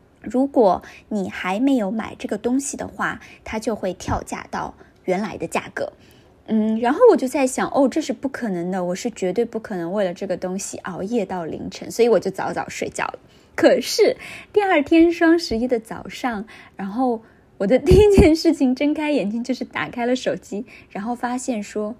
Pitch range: 195-290 Hz